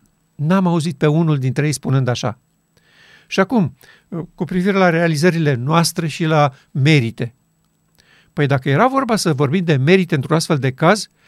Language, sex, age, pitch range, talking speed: Romanian, male, 50-69, 155-215 Hz, 160 wpm